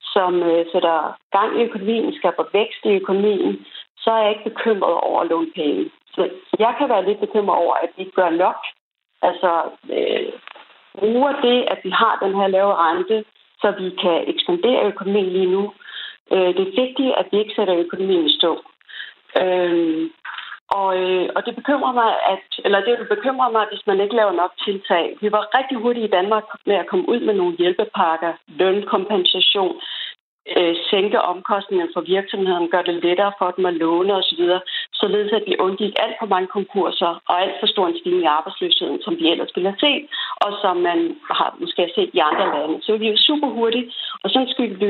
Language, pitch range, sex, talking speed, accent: Danish, 185-245 Hz, female, 190 wpm, native